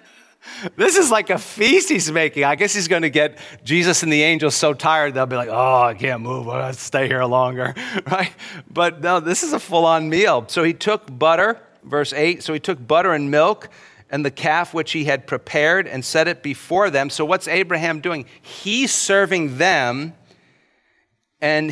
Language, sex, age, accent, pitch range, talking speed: English, male, 40-59, American, 120-170 Hz, 195 wpm